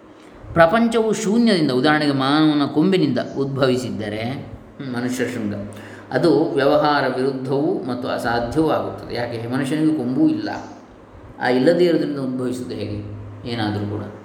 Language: Kannada